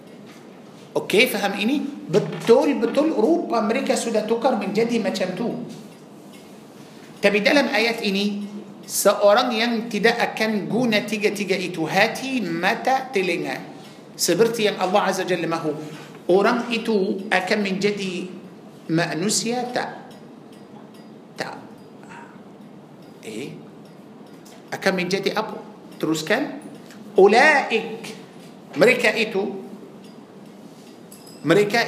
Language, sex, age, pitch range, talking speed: Malay, male, 50-69, 195-230 Hz, 90 wpm